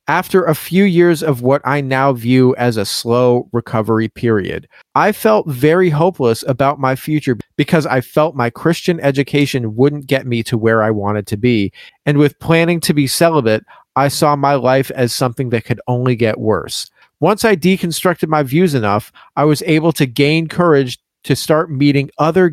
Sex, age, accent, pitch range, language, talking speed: male, 40-59, American, 130-175 Hz, English, 185 wpm